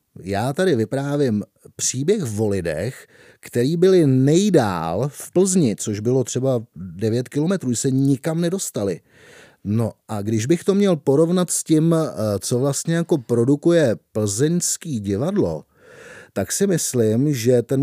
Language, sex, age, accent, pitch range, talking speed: Czech, male, 30-49, native, 110-170 Hz, 130 wpm